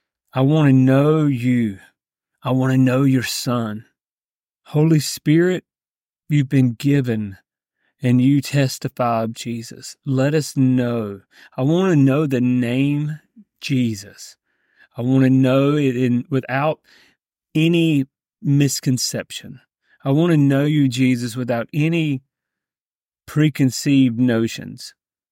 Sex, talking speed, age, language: male, 115 wpm, 40-59, English